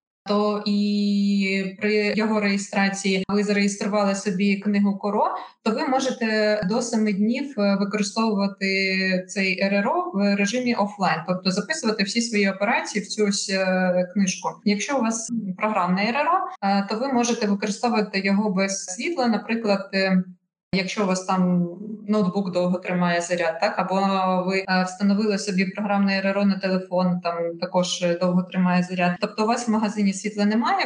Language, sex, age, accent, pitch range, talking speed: Ukrainian, female, 20-39, native, 190-215 Hz, 140 wpm